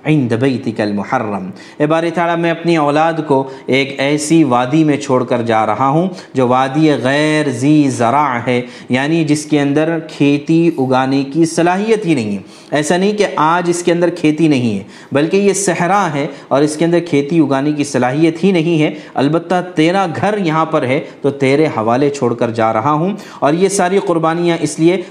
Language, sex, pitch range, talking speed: Urdu, male, 130-165 Hz, 190 wpm